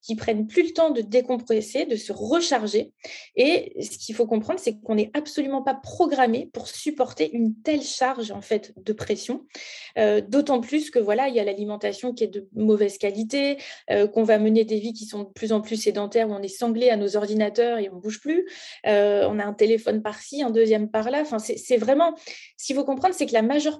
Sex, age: female, 20-39